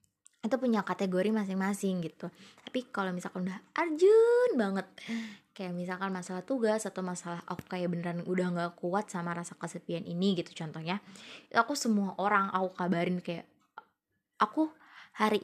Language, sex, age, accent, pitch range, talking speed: Indonesian, female, 20-39, native, 185-245 Hz, 145 wpm